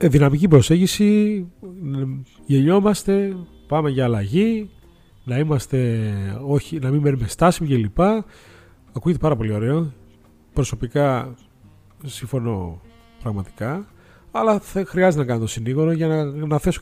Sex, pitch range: male, 115-170 Hz